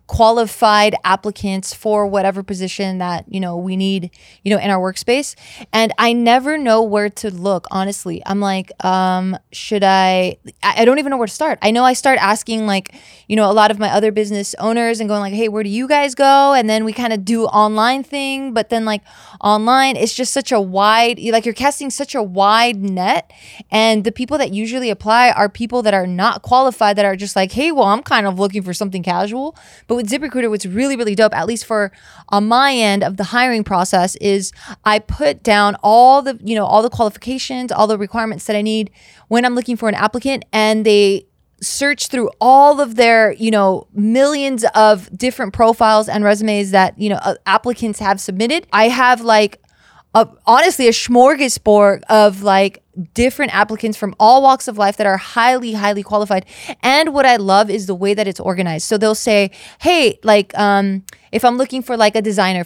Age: 20-39